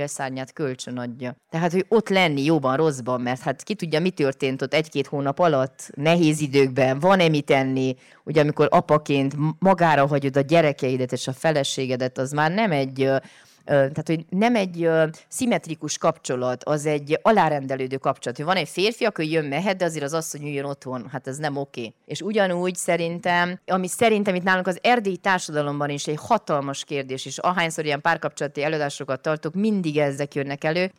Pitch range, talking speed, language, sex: 140-180 Hz, 175 wpm, Hungarian, female